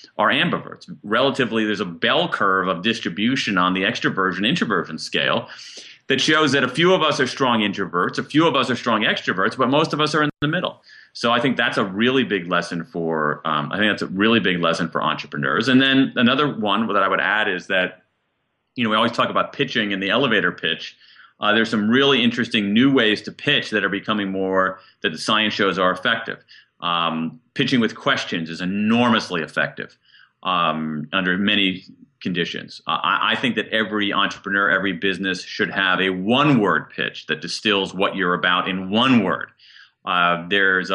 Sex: male